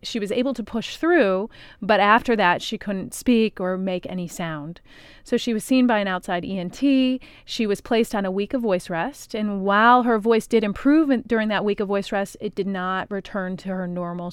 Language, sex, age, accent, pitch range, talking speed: English, female, 30-49, American, 185-230 Hz, 220 wpm